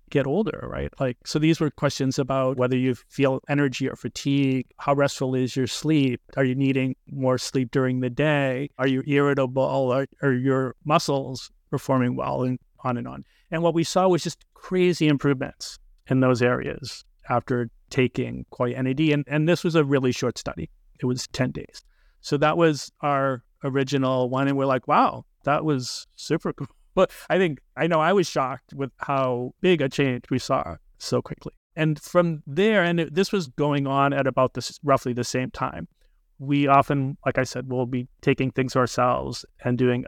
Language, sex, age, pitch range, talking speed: English, male, 30-49, 125-145 Hz, 190 wpm